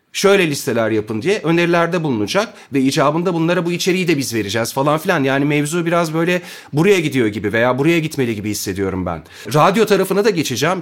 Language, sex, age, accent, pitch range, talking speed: Turkish, male, 40-59, native, 125-180 Hz, 185 wpm